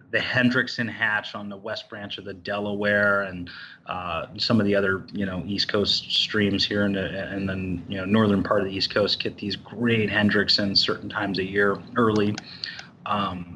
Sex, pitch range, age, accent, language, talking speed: male, 95-110 Hz, 30-49, American, English, 195 wpm